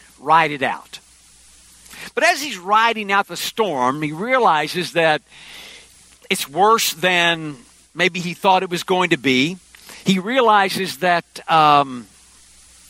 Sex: male